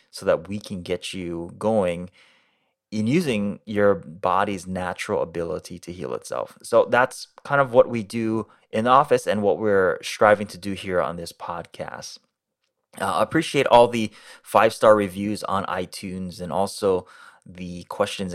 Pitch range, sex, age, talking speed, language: 90-115 Hz, male, 20-39, 155 wpm, English